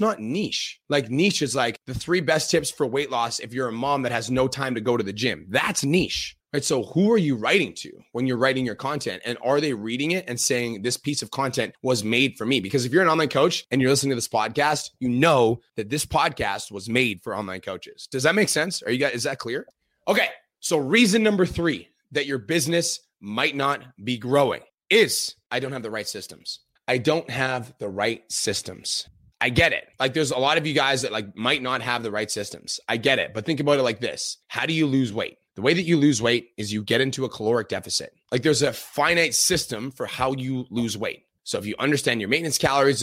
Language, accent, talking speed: English, American, 245 wpm